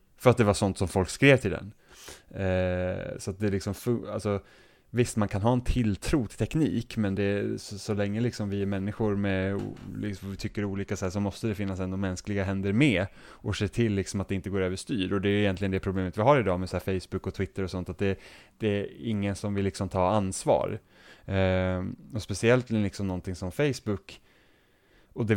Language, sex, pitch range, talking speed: Swedish, male, 95-110 Hz, 225 wpm